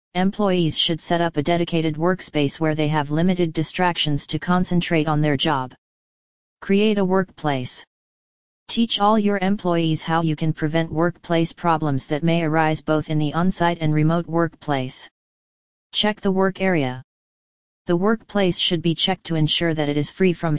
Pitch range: 155-180 Hz